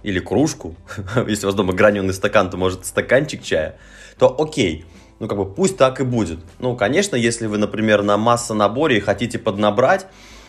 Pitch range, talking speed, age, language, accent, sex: 100-125 Hz, 175 wpm, 20-39, Russian, native, male